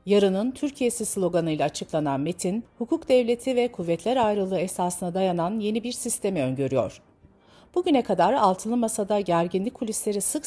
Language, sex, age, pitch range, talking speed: Turkish, female, 50-69, 165-235 Hz, 130 wpm